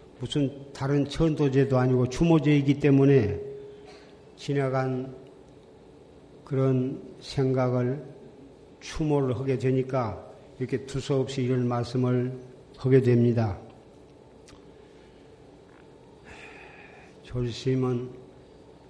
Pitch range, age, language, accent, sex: 130-145 Hz, 50-69, Korean, native, male